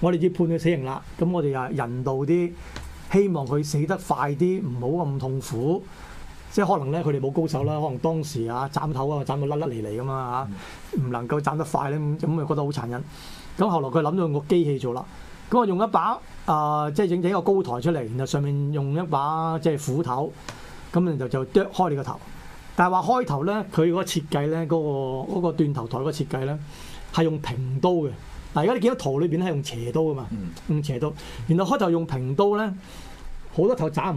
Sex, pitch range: male, 140-175 Hz